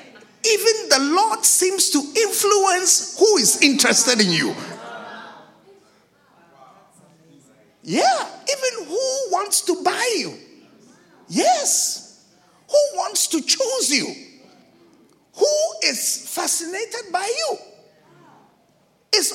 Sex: male